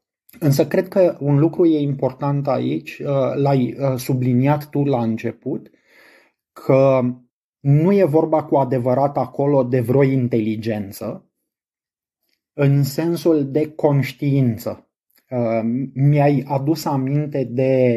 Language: Romanian